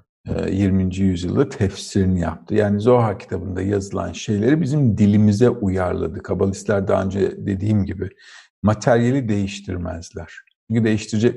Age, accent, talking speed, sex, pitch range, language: 50-69, native, 110 wpm, male, 95-120 Hz, Turkish